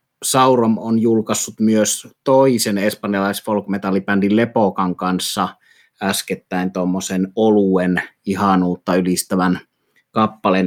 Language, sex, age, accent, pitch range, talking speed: Finnish, male, 30-49, native, 95-110 Hz, 85 wpm